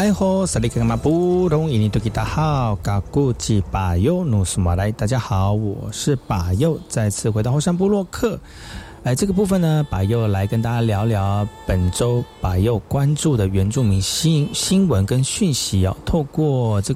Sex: male